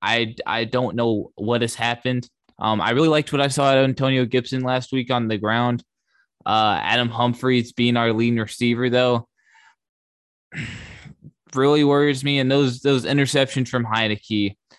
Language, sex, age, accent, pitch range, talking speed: English, male, 20-39, American, 105-125 Hz, 160 wpm